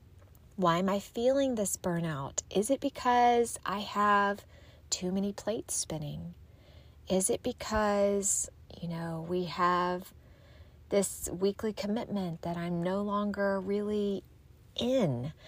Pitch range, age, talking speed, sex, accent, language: 170-210 Hz, 30-49, 120 wpm, female, American, English